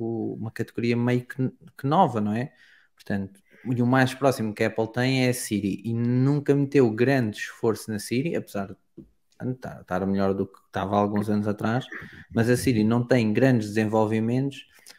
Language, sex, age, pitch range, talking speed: Portuguese, male, 20-39, 110-130 Hz, 175 wpm